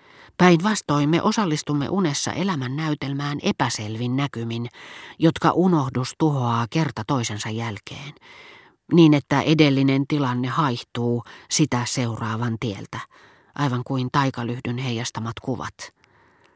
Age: 40-59